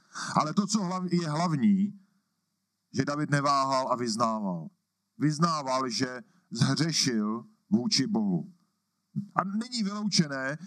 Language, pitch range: Czech, 155-195 Hz